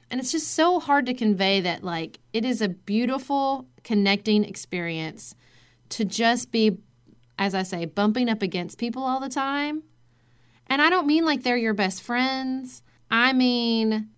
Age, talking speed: 30-49, 165 wpm